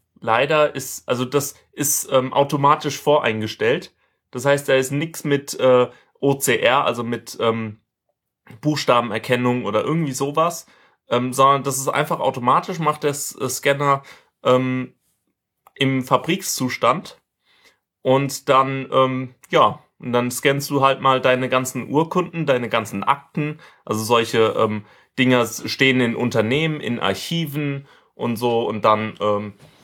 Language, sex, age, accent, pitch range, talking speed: German, male, 30-49, German, 120-145 Hz, 130 wpm